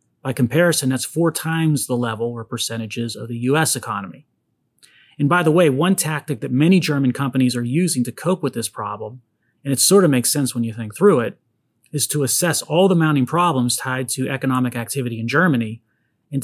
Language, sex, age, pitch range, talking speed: English, male, 30-49, 120-145 Hz, 200 wpm